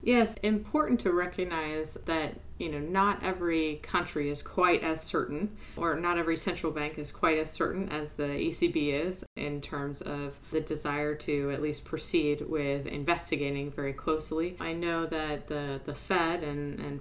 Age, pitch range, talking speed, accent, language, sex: 30-49, 140-160 Hz, 170 wpm, American, English, female